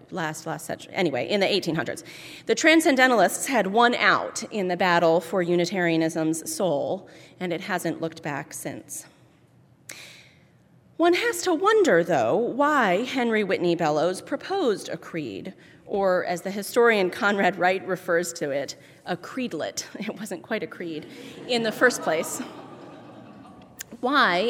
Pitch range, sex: 170-225 Hz, female